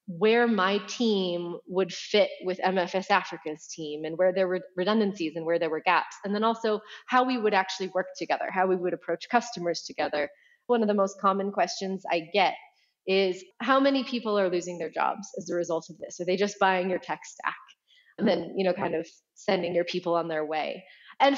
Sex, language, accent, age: female, English, American, 30-49